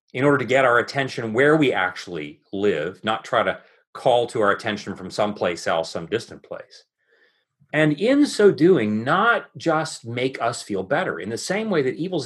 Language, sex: English, male